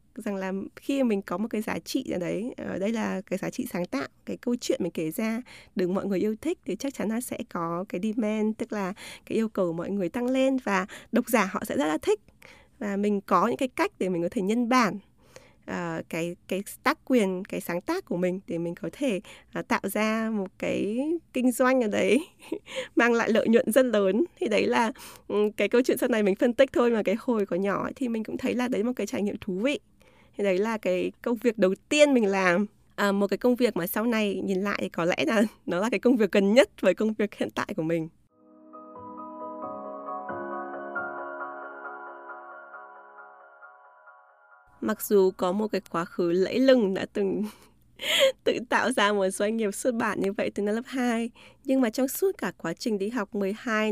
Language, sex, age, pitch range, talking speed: Vietnamese, female, 20-39, 185-245 Hz, 220 wpm